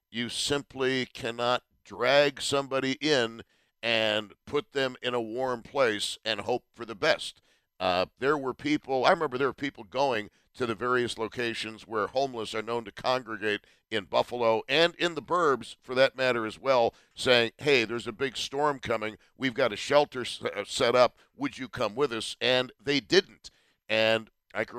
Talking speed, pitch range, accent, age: 175 wpm, 110-130 Hz, American, 50-69